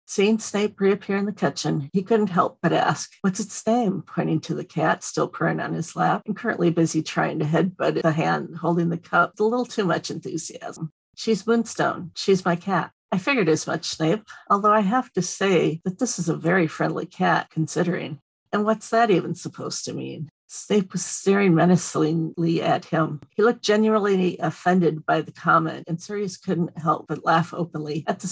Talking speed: 195 wpm